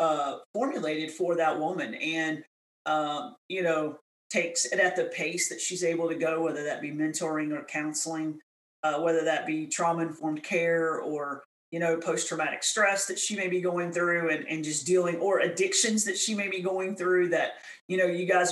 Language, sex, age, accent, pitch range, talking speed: English, male, 40-59, American, 160-185 Hz, 190 wpm